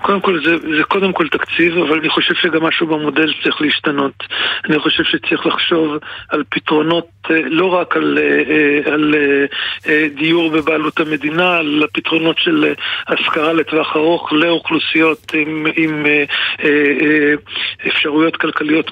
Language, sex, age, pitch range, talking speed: Hebrew, male, 50-69, 155-180 Hz, 125 wpm